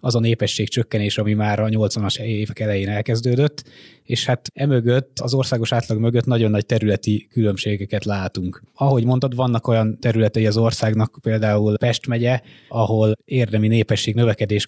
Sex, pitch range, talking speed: male, 110-130 Hz, 150 wpm